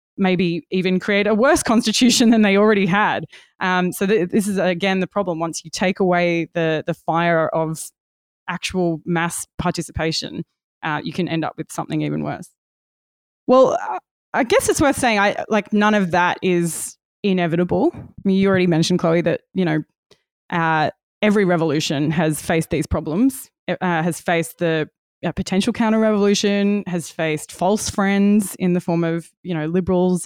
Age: 20-39